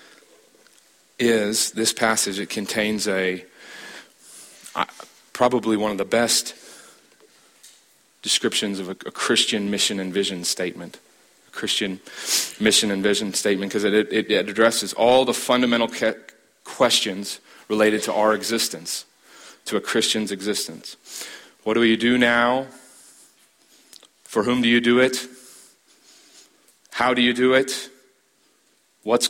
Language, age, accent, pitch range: English, 30-49, American, 105-125 Hz